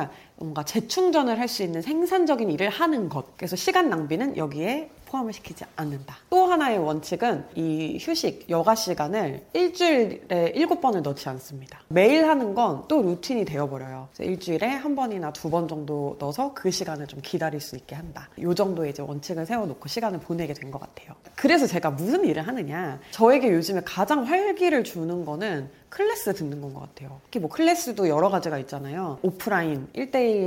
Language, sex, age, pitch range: Korean, female, 30-49, 155-240 Hz